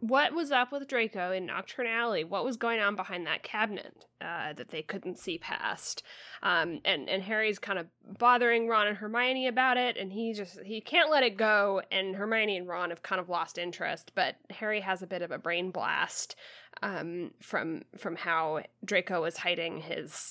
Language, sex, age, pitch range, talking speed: English, female, 10-29, 185-240 Hz, 195 wpm